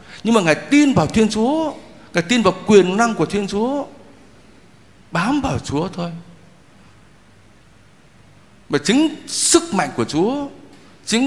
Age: 60-79